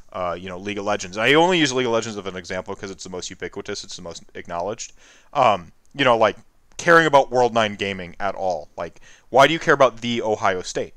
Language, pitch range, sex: English, 100-130 Hz, male